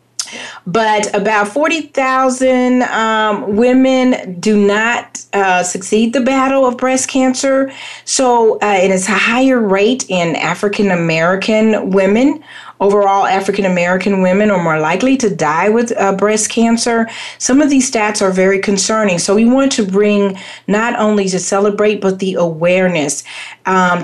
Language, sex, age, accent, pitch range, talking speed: English, female, 40-59, American, 185-240 Hz, 140 wpm